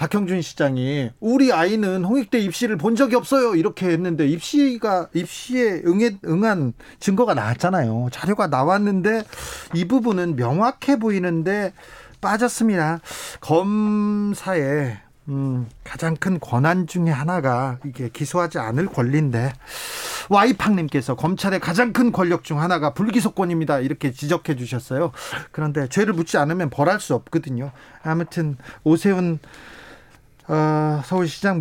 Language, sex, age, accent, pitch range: Korean, male, 40-59, native, 145-200 Hz